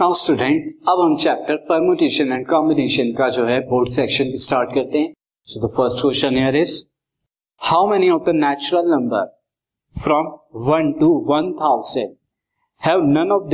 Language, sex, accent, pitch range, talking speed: Hindi, male, native, 130-170 Hz, 110 wpm